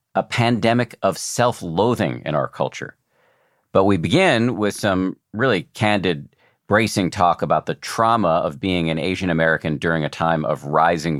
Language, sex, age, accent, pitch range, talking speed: English, male, 50-69, American, 80-105 Hz, 155 wpm